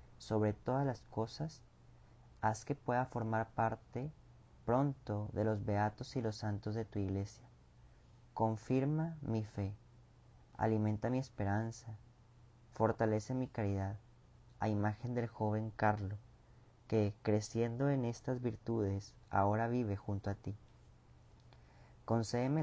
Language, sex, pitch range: Spanish, male, 105-120 Hz